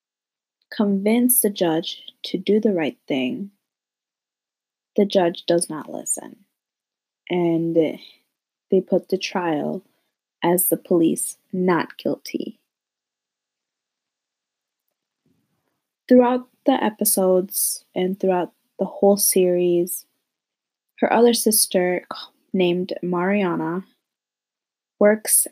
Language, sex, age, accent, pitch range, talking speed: English, female, 20-39, American, 175-220 Hz, 85 wpm